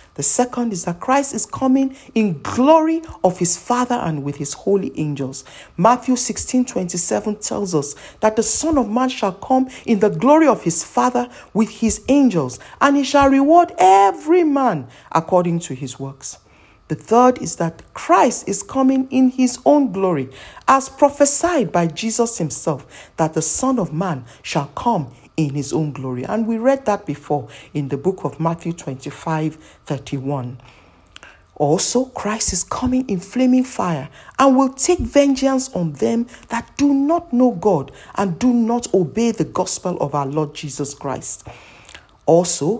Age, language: 50-69, Japanese